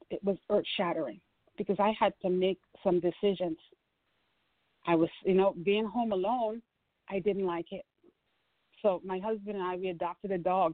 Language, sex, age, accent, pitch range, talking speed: English, female, 40-59, American, 185-235 Hz, 170 wpm